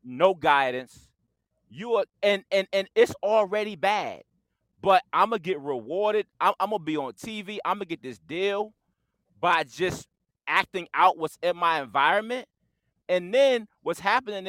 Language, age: English, 30-49